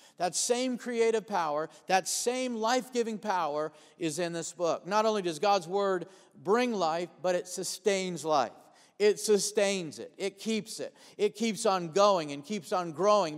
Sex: male